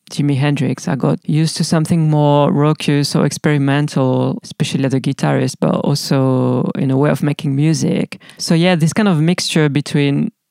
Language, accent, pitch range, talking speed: English, French, 140-170 Hz, 170 wpm